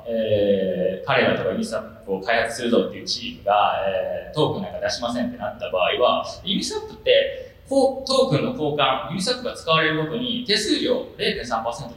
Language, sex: Japanese, male